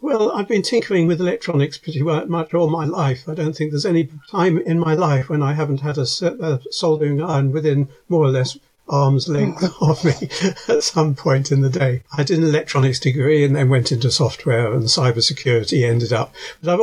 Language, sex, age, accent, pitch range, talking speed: English, male, 60-79, British, 135-175 Hz, 205 wpm